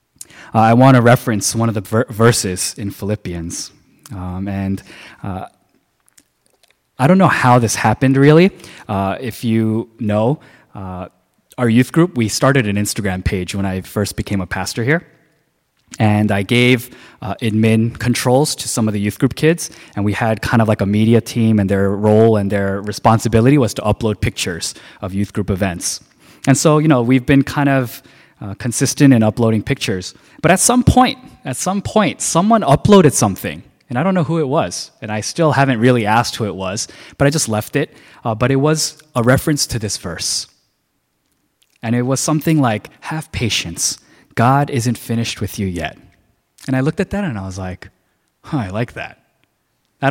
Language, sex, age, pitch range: Korean, male, 20-39, 105-140 Hz